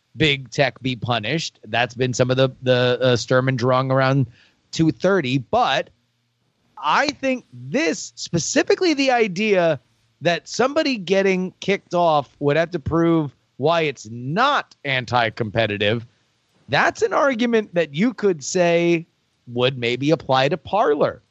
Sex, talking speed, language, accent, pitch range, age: male, 130 wpm, English, American, 120-165 Hz, 30-49